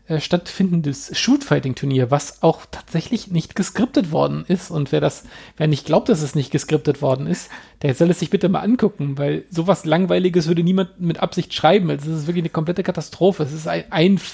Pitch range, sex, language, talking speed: 150-180 Hz, male, German, 195 wpm